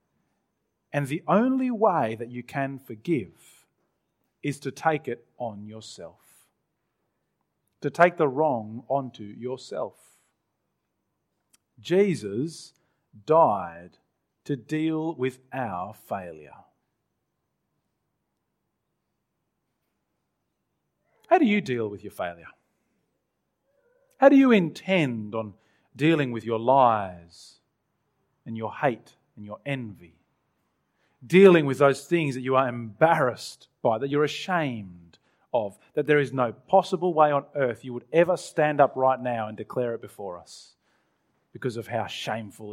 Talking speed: 120 wpm